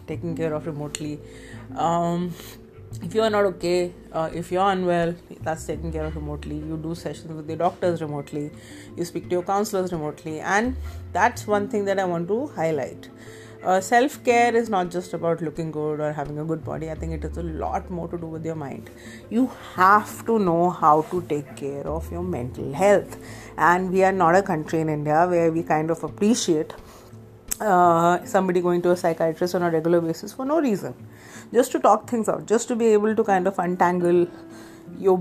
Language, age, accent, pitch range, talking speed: English, 30-49, Indian, 155-210 Hz, 200 wpm